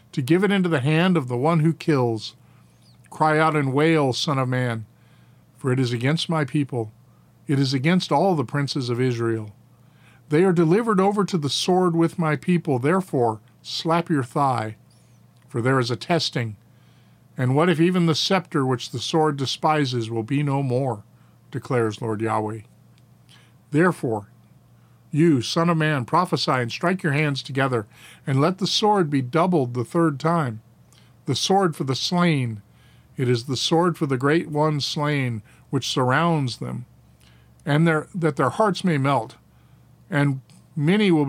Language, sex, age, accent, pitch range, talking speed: English, male, 50-69, American, 125-165 Hz, 165 wpm